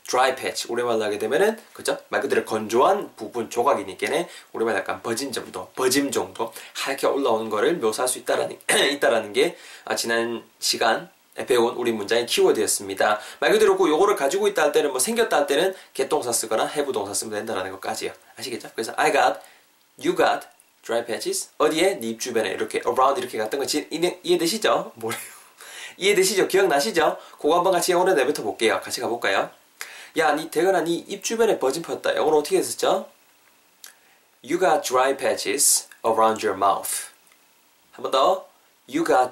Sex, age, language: male, 20-39, Korean